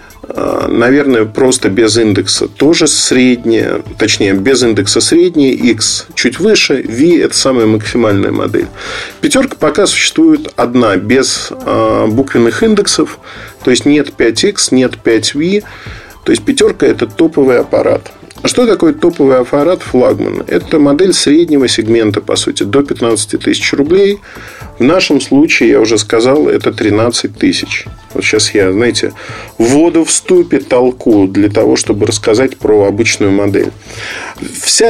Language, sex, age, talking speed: Russian, male, 40-59, 135 wpm